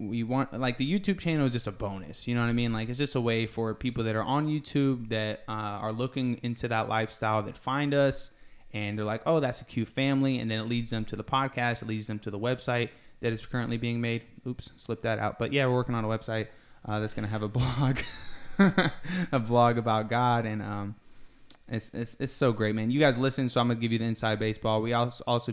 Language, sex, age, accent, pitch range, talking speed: English, male, 20-39, American, 105-120 Hz, 250 wpm